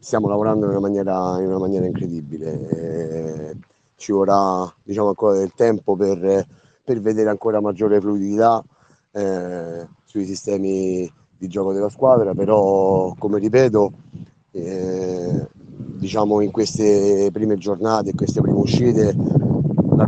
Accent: native